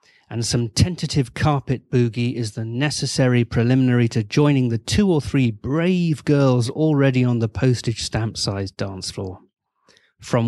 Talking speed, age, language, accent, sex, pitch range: 145 wpm, 40-59, English, British, male, 115-145 Hz